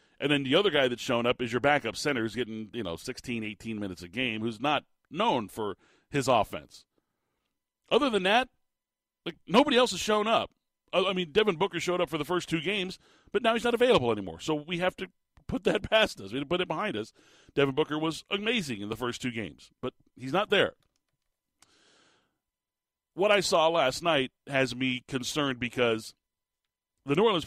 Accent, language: American, English